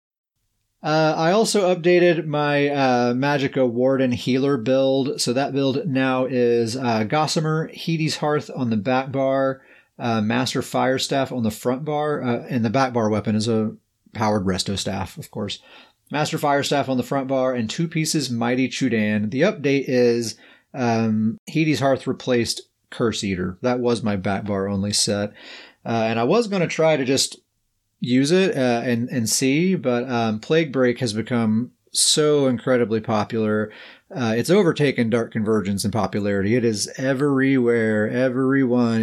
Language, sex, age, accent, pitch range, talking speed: English, male, 30-49, American, 110-135 Hz, 160 wpm